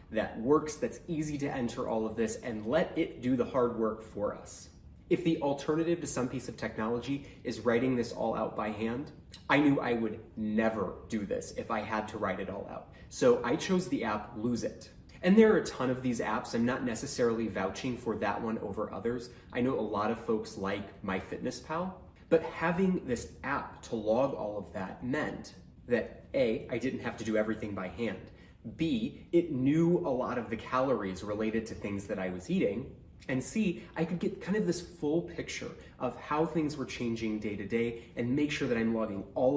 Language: English